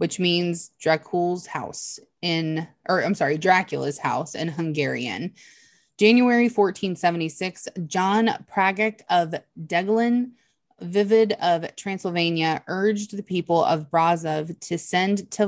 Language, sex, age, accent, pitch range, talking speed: English, female, 20-39, American, 160-200 Hz, 110 wpm